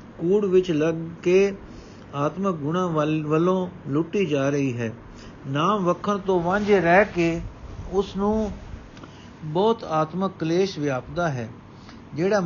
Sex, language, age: male, Punjabi, 60-79